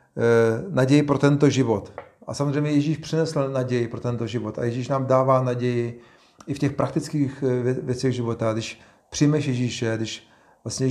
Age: 40-59